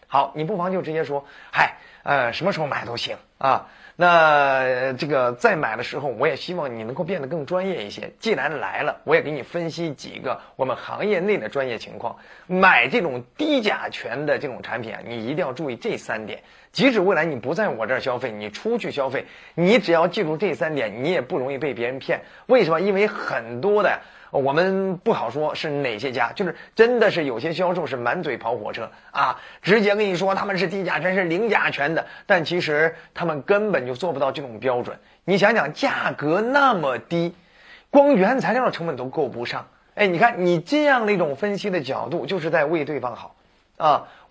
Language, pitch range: Chinese, 155-205 Hz